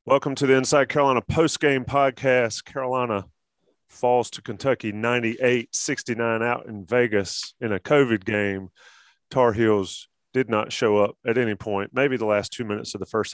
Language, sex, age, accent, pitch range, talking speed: English, male, 30-49, American, 105-130 Hz, 170 wpm